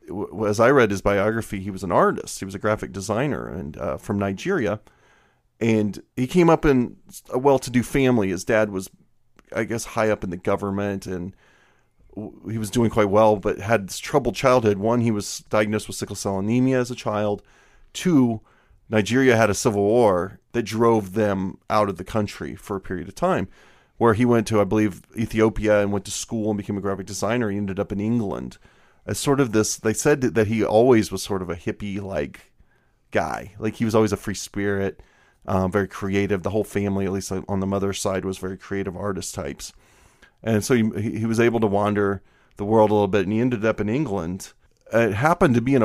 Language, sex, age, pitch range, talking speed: English, male, 30-49, 100-115 Hz, 210 wpm